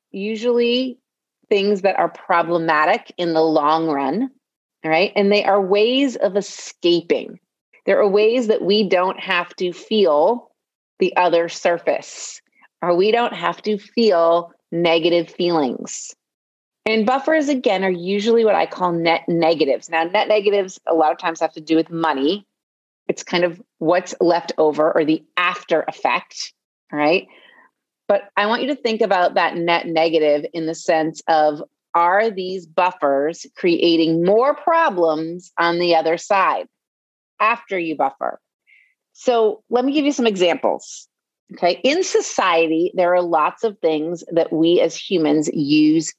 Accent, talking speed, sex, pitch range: American, 155 wpm, female, 165-225 Hz